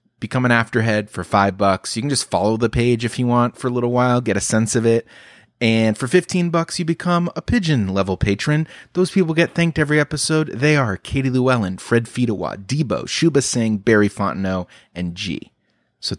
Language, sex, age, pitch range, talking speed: English, male, 30-49, 100-135 Hz, 200 wpm